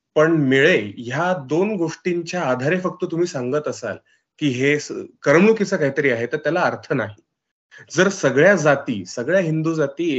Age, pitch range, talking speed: 30-49, 140-185 Hz, 145 wpm